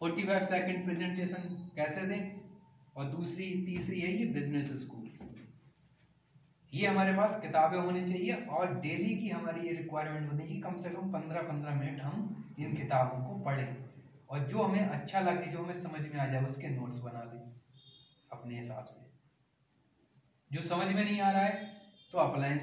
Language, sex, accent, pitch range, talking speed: Hindi, male, native, 140-195 Hz, 75 wpm